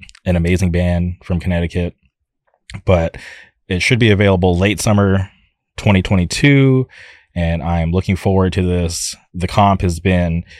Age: 20-39